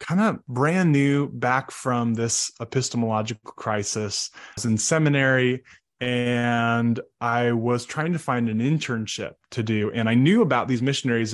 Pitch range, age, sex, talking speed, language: 115-135 Hz, 20-39, male, 155 wpm, English